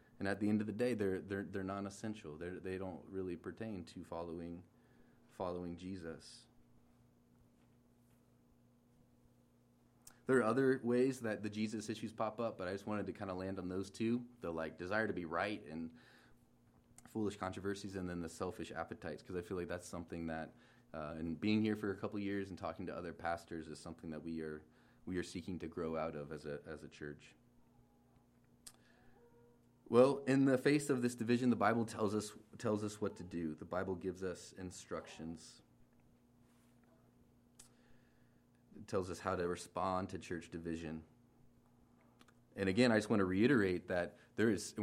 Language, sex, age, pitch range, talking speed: English, male, 30-49, 80-105 Hz, 180 wpm